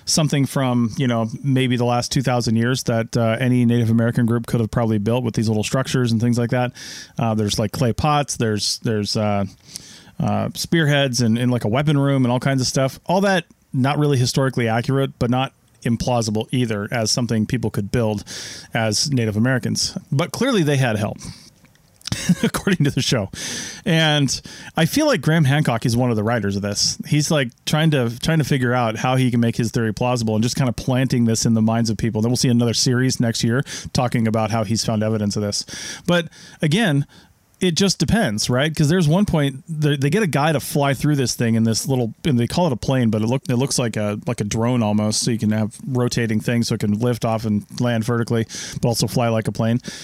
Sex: male